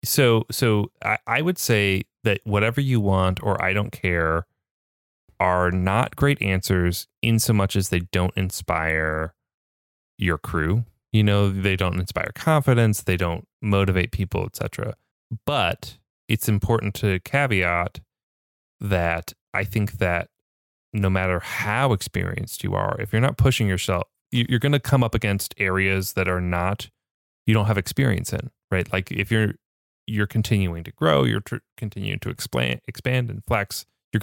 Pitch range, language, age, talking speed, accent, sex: 90-120 Hz, English, 30-49, 155 wpm, American, male